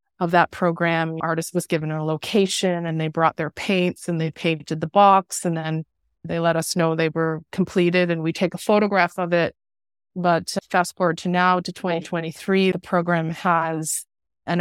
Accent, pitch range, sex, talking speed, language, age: American, 165-190 Hz, female, 185 wpm, English, 30-49